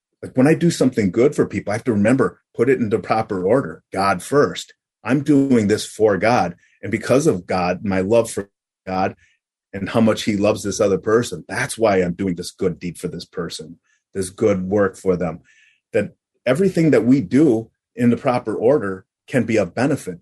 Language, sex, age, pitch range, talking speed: English, male, 30-49, 95-115 Hz, 200 wpm